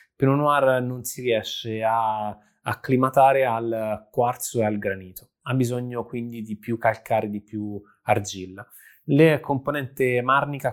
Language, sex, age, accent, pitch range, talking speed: Italian, male, 20-39, native, 110-130 Hz, 140 wpm